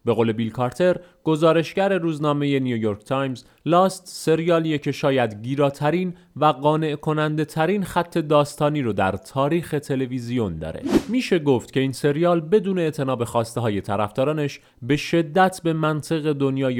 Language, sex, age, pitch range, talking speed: Persian, male, 30-49, 115-155 Hz, 140 wpm